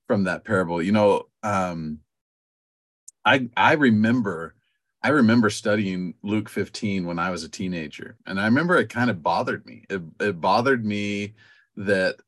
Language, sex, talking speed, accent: English, male, 155 wpm, American